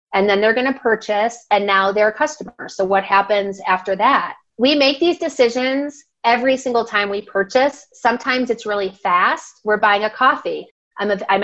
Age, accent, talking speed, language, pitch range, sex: 30-49, American, 185 wpm, English, 200-250 Hz, female